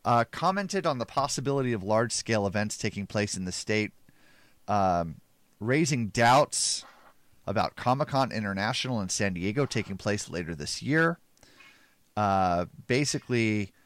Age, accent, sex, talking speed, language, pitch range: 30-49, American, male, 135 wpm, English, 100-130 Hz